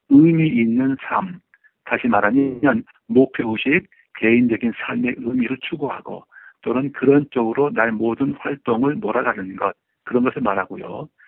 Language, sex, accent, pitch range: Korean, male, native, 120-170 Hz